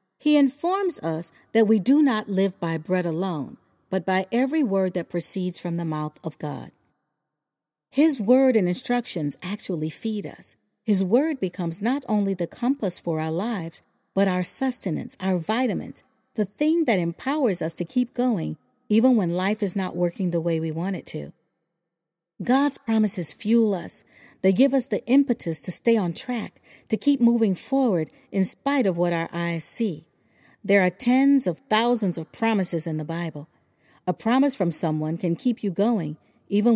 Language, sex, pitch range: English, female, 170-230 Hz